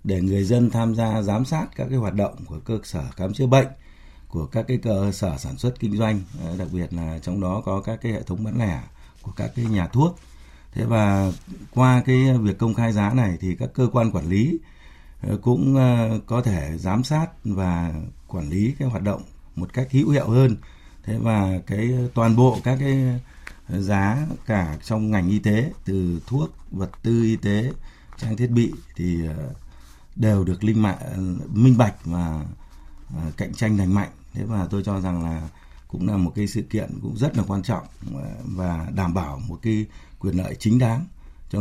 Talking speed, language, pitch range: 195 wpm, Vietnamese, 90-120 Hz